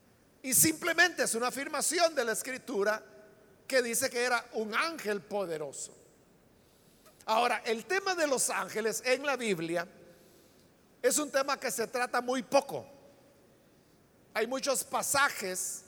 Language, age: Spanish, 50-69